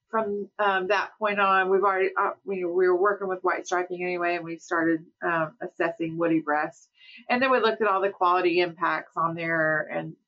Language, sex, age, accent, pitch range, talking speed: English, female, 40-59, American, 180-230 Hz, 205 wpm